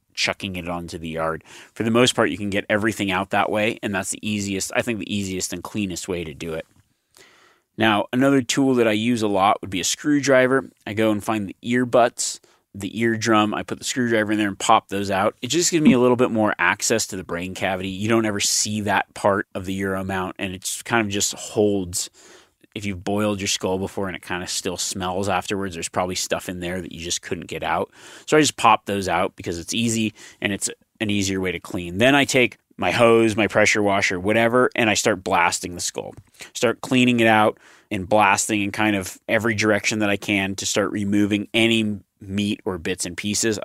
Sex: male